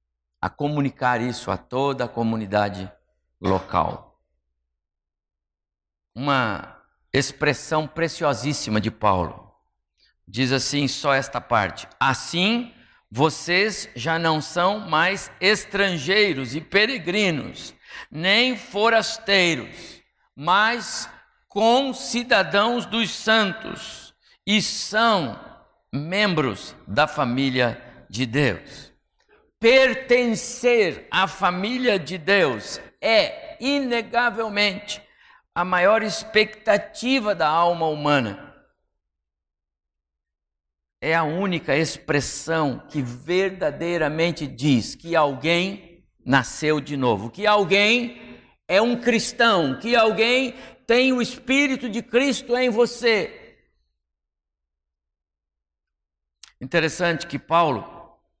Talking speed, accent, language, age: 85 wpm, Brazilian, Portuguese, 60-79